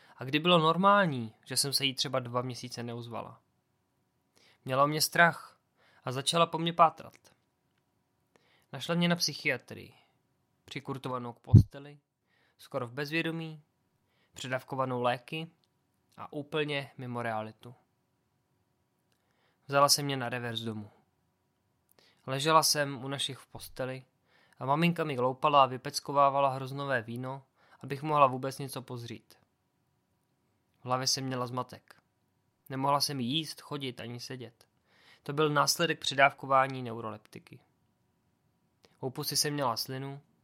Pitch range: 125-155 Hz